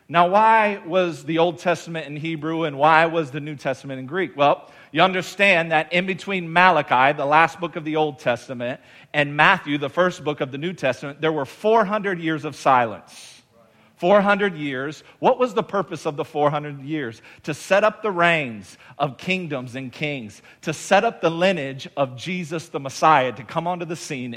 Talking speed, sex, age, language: 190 wpm, male, 40-59, English